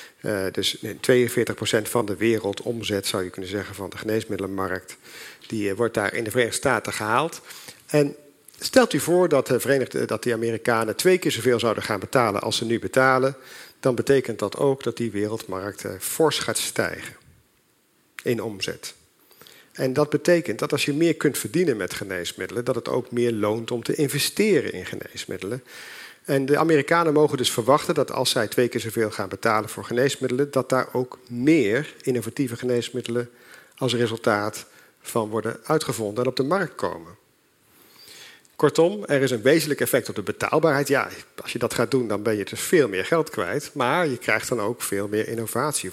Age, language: 50-69, Dutch